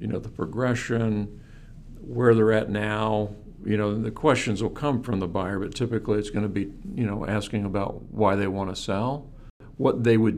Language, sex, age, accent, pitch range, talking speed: English, male, 50-69, American, 95-125 Hz, 200 wpm